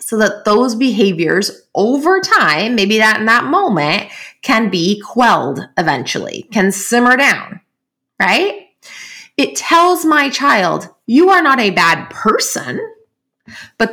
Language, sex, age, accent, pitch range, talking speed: English, female, 20-39, American, 190-295 Hz, 130 wpm